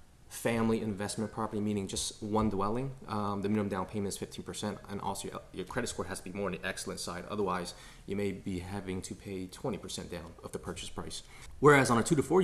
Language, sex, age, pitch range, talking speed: English, male, 30-49, 95-110 Hz, 225 wpm